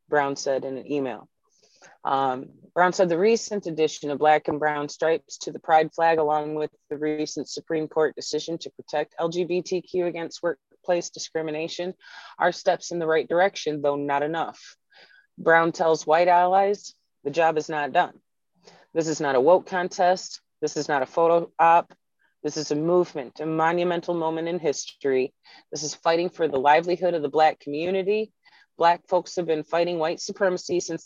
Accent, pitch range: American, 150-180 Hz